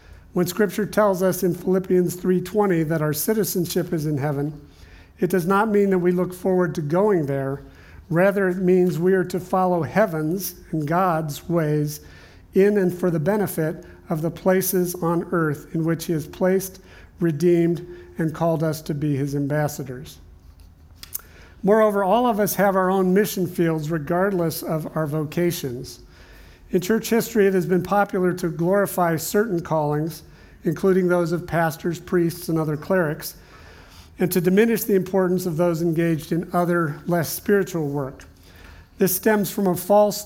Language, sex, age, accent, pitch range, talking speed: English, male, 50-69, American, 155-185 Hz, 160 wpm